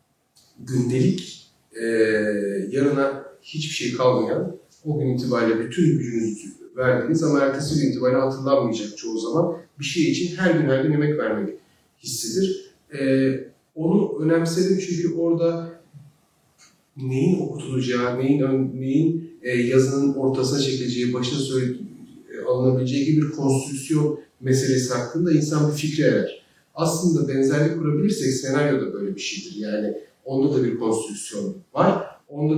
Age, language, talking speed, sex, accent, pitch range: 40-59, Turkish, 125 wpm, male, native, 125-160 Hz